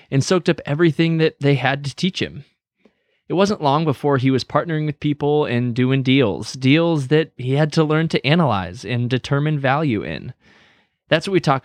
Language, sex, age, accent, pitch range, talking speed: English, male, 20-39, American, 120-155 Hz, 195 wpm